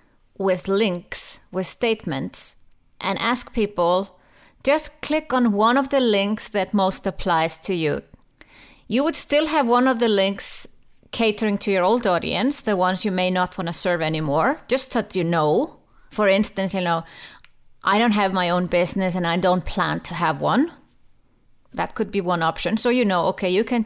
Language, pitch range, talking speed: English, 175-220 Hz, 185 wpm